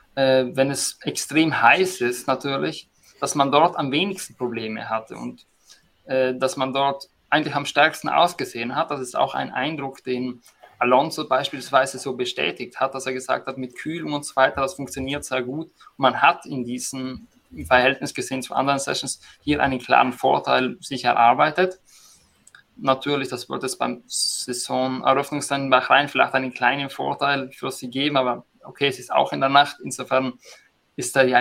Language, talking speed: German, 175 wpm